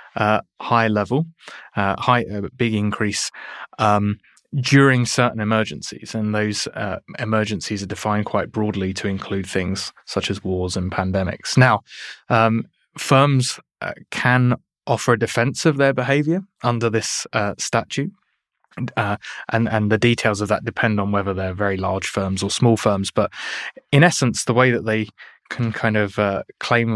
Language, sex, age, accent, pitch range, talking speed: English, male, 20-39, British, 100-120 Hz, 160 wpm